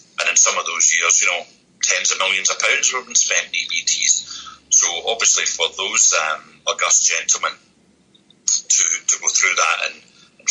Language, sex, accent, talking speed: English, male, British, 170 wpm